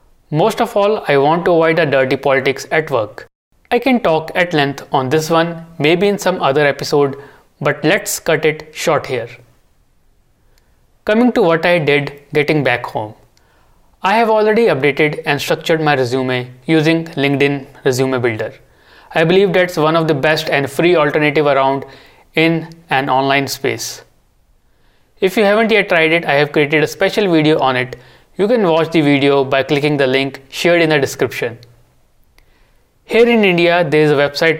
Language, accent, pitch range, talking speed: English, Indian, 140-175 Hz, 175 wpm